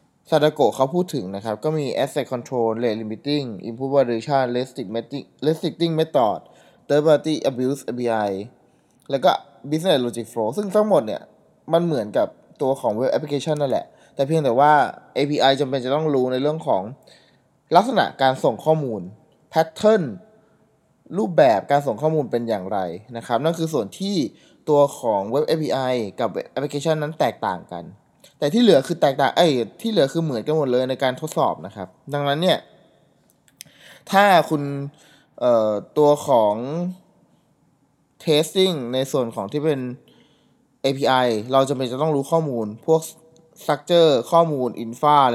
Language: Thai